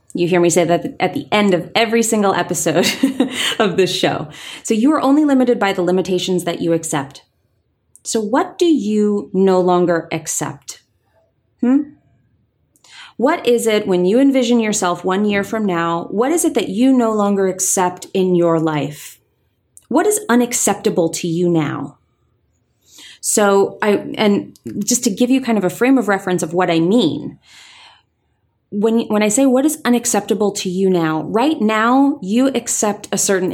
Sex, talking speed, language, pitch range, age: female, 170 wpm, English, 180-240 Hz, 30-49